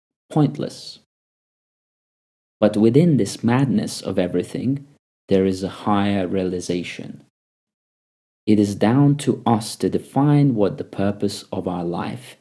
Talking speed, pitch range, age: 120 wpm, 95-130 Hz, 40-59